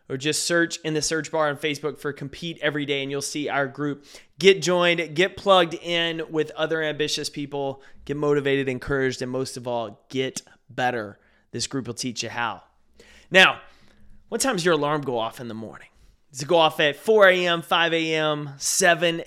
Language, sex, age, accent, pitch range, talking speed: English, male, 30-49, American, 135-165 Hz, 195 wpm